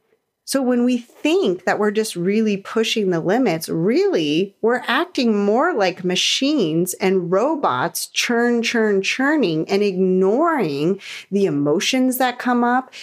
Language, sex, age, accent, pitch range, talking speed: English, female, 30-49, American, 185-230 Hz, 135 wpm